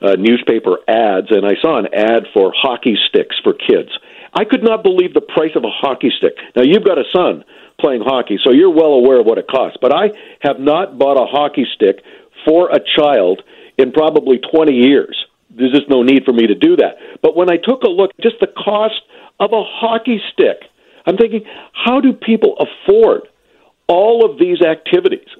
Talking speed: 205 wpm